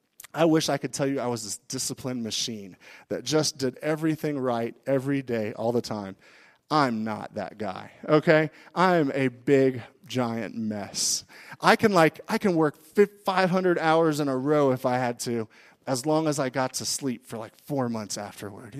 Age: 30-49